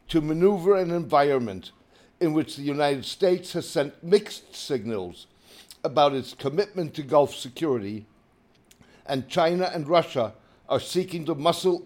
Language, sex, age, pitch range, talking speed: English, male, 60-79, 125-170 Hz, 135 wpm